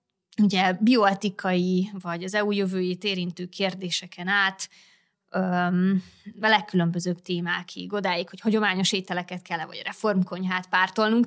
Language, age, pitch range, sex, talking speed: Hungarian, 20-39, 185-225 Hz, female, 100 wpm